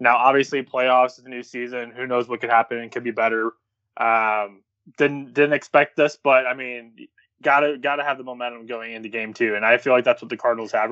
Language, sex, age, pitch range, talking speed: English, male, 20-39, 115-140 Hz, 230 wpm